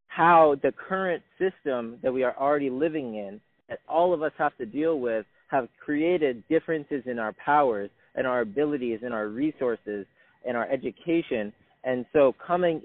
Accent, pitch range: American, 125-160 Hz